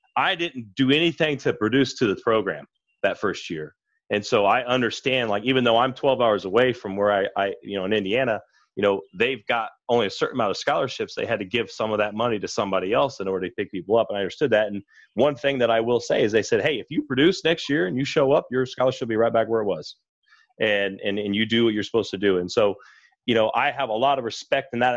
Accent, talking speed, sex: American, 270 wpm, male